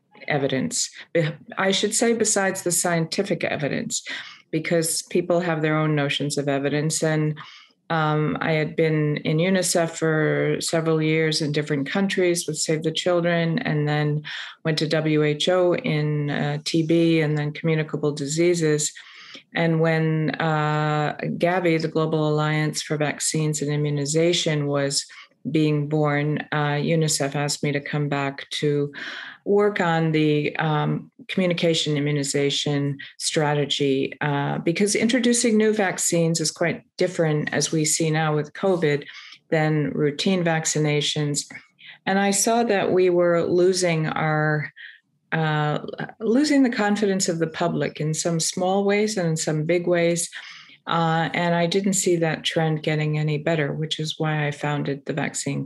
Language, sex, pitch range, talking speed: English, female, 150-175 Hz, 140 wpm